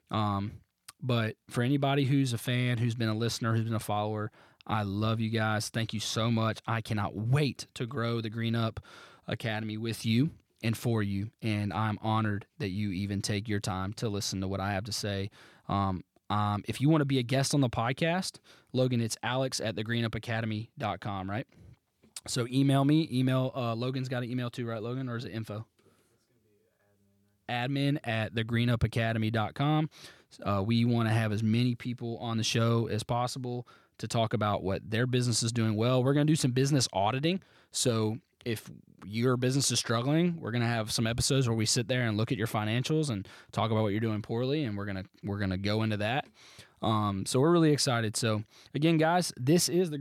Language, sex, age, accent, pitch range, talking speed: English, male, 20-39, American, 110-130 Hz, 205 wpm